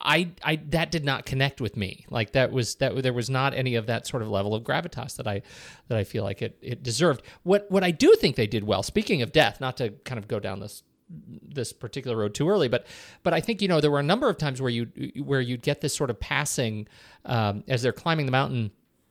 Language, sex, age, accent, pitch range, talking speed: English, male, 40-59, American, 115-145 Hz, 260 wpm